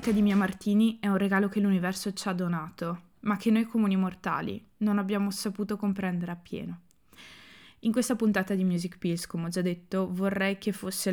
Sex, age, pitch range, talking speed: female, 20-39, 175-200 Hz, 185 wpm